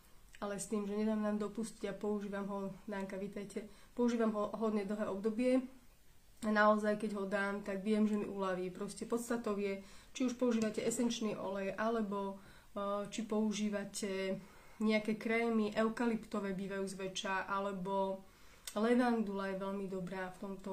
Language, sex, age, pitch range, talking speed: Slovak, female, 30-49, 200-225 Hz, 145 wpm